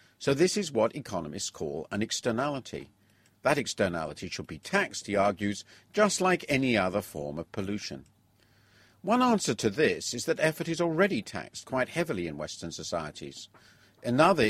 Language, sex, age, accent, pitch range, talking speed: English, male, 50-69, British, 100-150 Hz, 155 wpm